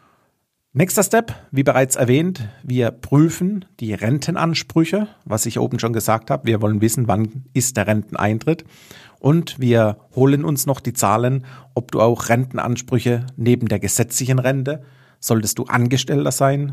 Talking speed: 145 wpm